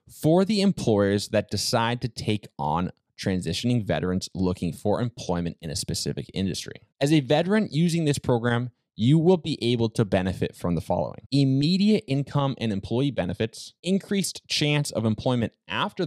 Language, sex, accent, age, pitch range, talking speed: English, male, American, 20-39, 105-165 Hz, 155 wpm